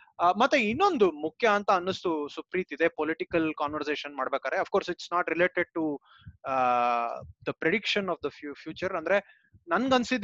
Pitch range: 160-210 Hz